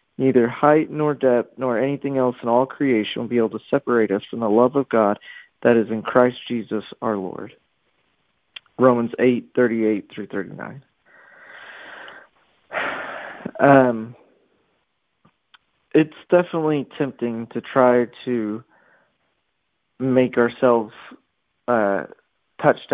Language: English